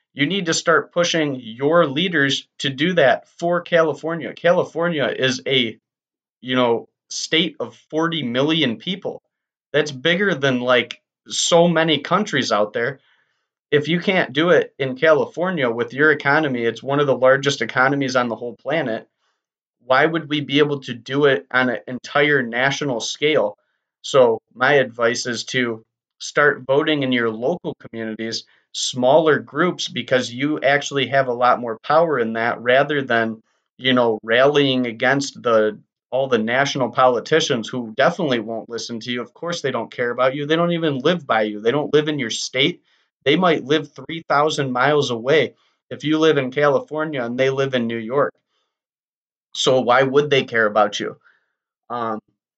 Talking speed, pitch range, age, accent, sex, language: 170 wpm, 120-155 Hz, 30-49, American, male, English